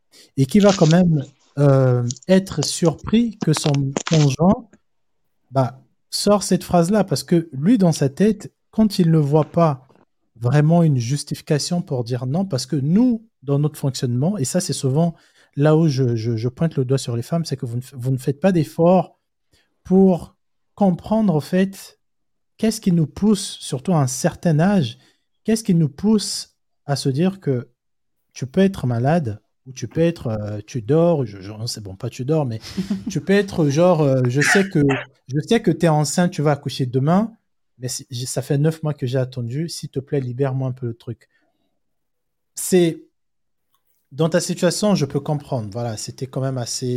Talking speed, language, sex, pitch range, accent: 185 wpm, French, male, 130-175 Hz, French